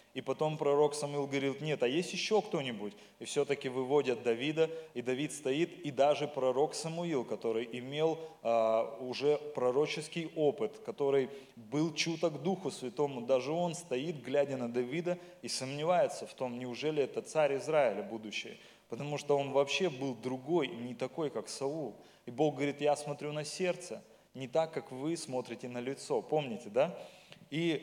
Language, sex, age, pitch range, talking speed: Russian, male, 20-39, 125-155 Hz, 160 wpm